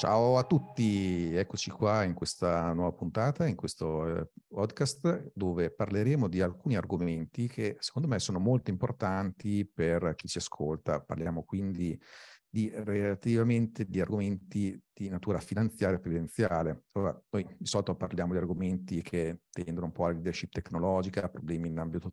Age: 50-69